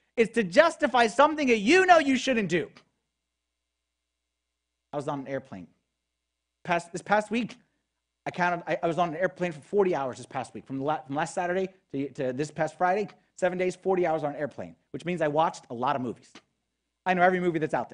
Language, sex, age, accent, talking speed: English, male, 30-49, American, 215 wpm